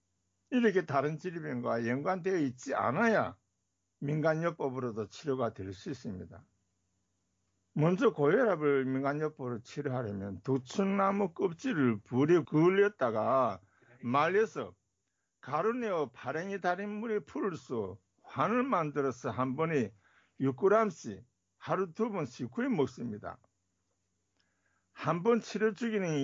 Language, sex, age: Korean, male, 60-79